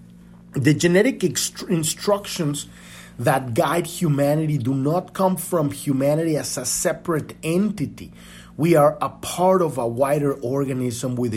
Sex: male